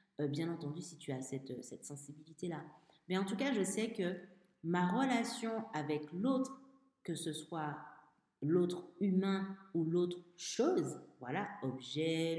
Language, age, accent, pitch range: French, 50-69, French, 150-195 Hz